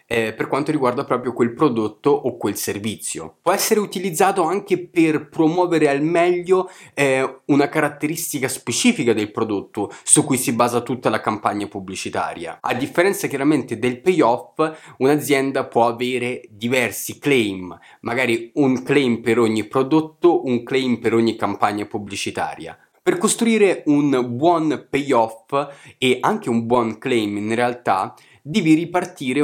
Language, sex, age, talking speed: Italian, male, 20-39, 135 wpm